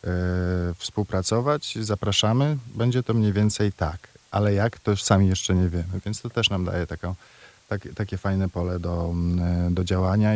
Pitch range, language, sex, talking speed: 95-105 Hz, Polish, male, 145 wpm